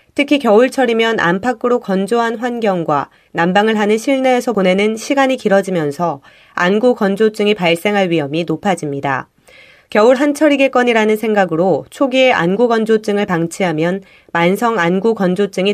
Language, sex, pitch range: Korean, female, 185-240 Hz